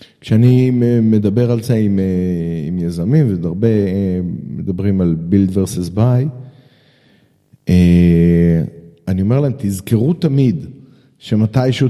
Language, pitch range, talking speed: Hebrew, 100-130 Hz, 95 wpm